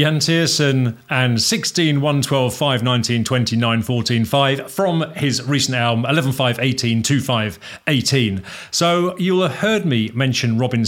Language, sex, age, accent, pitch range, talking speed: English, male, 40-59, British, 110-145 Hz, 160 wpm